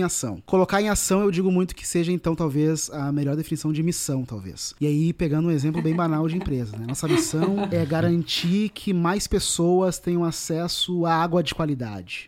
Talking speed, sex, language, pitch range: 200 wpm, male, Portuguese, 145-190 Hz